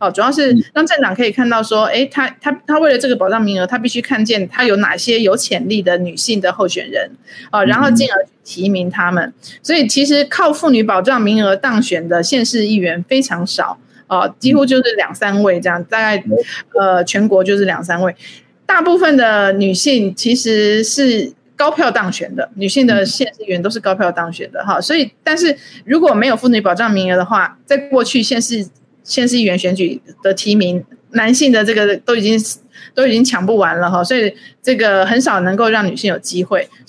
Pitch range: 190-250 Hz